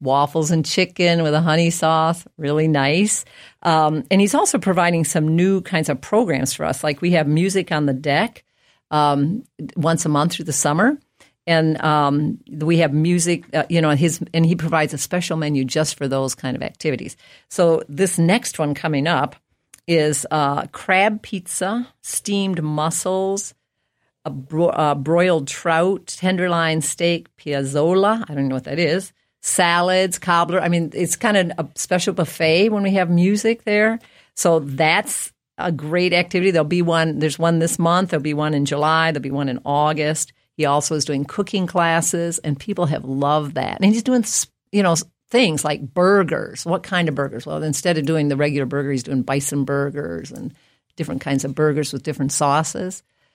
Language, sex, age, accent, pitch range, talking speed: English, female, 50-69, American, 145-180 Hz, 175 wpm